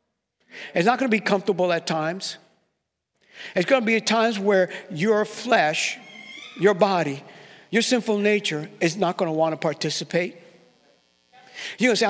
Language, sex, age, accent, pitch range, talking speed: English, male, 60-79, American, 160-225 Hz, 165 wpm